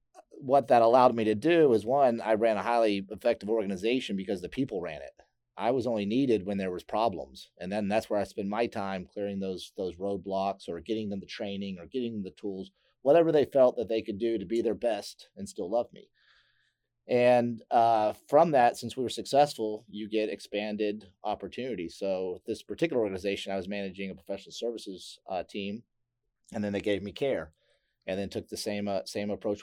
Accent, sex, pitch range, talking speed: American, male, 95-115 Hz, 205 wpm